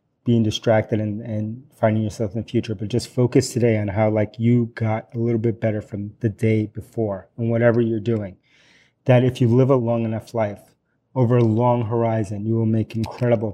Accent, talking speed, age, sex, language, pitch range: American, 205 wpm, 30-49, male, English, 110-125 Hz